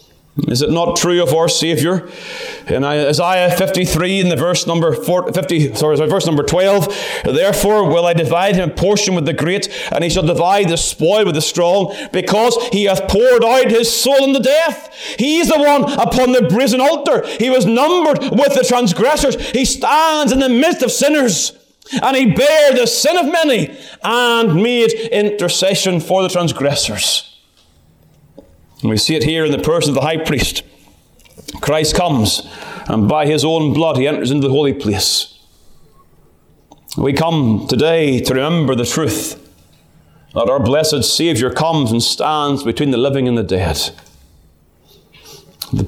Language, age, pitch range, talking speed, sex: English, 30-49, 150-210 Hz, 165 wpm, male